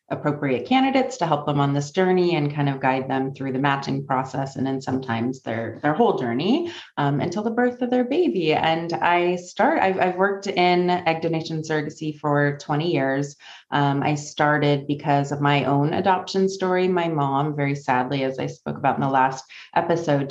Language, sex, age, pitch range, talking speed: English, female, 30-49, 135-160 Hz, 190 wpm